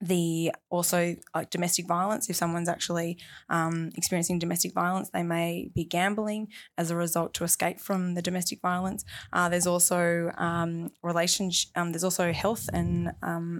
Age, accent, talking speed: 20-39, Australian, 160 wpm